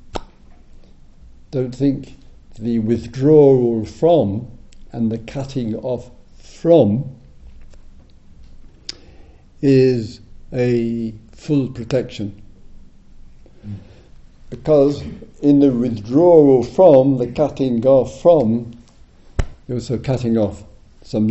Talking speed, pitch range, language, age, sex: 80 wpm, 95-135 Hz, English, 60-79, male